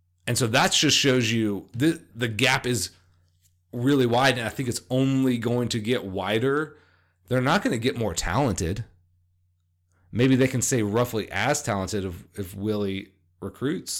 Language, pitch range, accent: English, 90-125 Hz, American